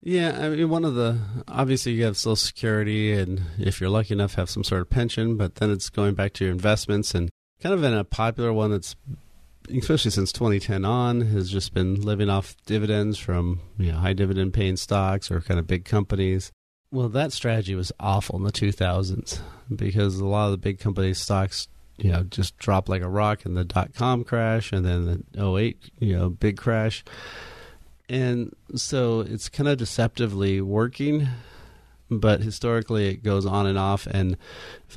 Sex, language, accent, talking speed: male, English, American, 195 wpm